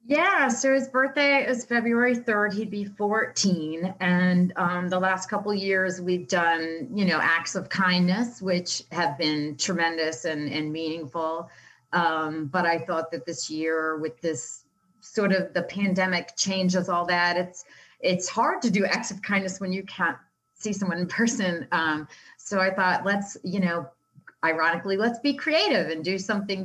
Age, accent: 30-49, American